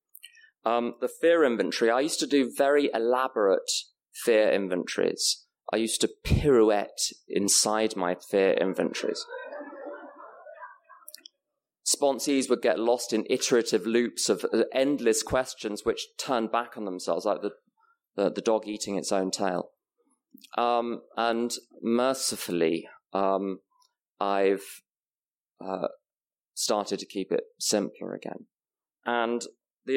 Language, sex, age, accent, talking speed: English, male, 20-39, British, 115 wpm